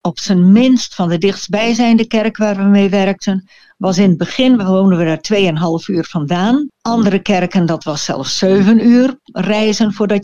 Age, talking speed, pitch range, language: 60-79, 175 wpm, 170-220 Hz, Dutch